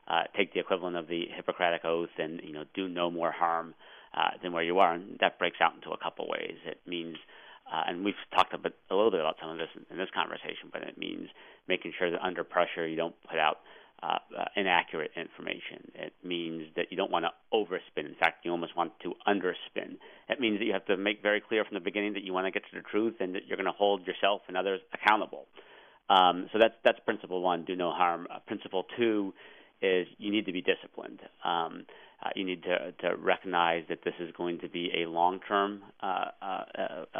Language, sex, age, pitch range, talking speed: English, male, 40-59, 85-100 Hz, 230 wpm